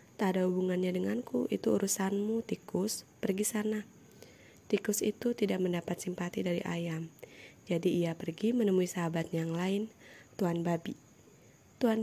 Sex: female